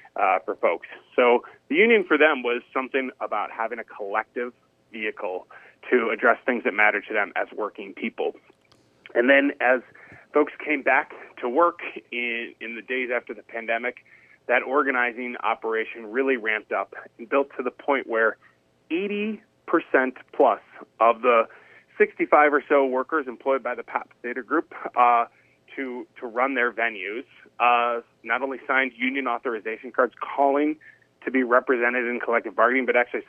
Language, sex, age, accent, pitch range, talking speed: English, male, 30-49, American, 115-140 Hz, 160 wpm